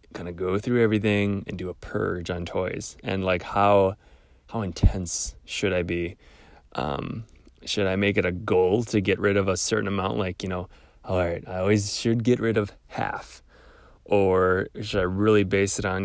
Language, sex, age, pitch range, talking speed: English, male, 20-39, 95-110 Hz, 195 wpm